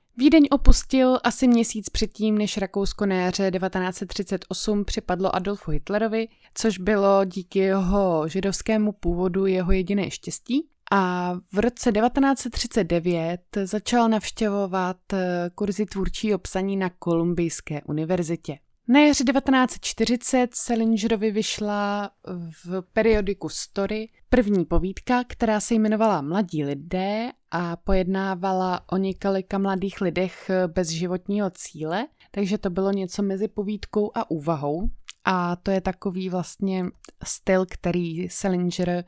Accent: native